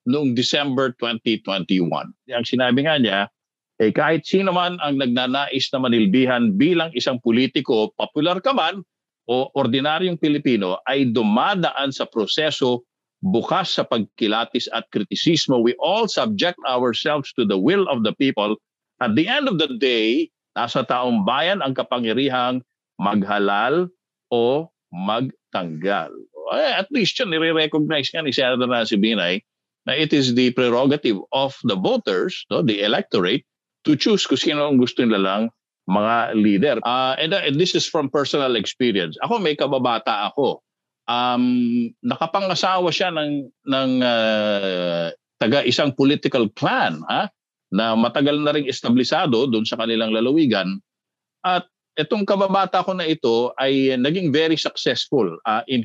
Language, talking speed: Filipino, 140 wpm